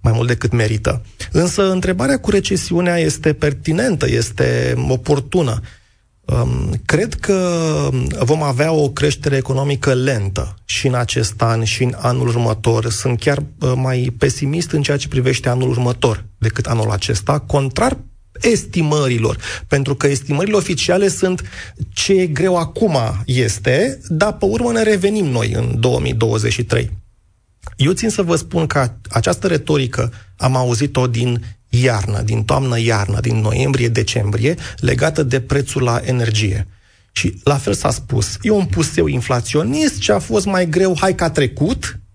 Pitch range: 110-155 Hz